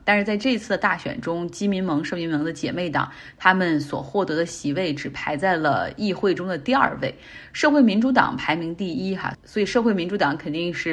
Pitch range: 165-215 Hz